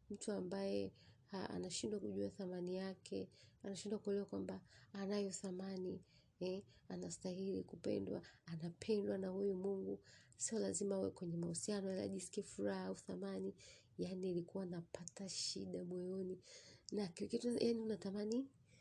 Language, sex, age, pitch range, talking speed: Swahili, female, 30-49, 130-195 Hz, 120 wpm